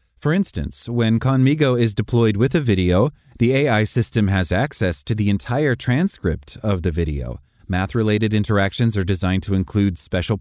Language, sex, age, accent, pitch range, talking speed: English, male, 30-49, American, 90-120 Hz, 160 wpm